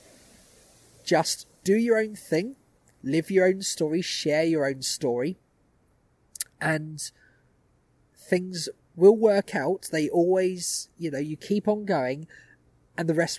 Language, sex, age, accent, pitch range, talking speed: English, male, 20-39, British, 150-195 Hz, 130 wpm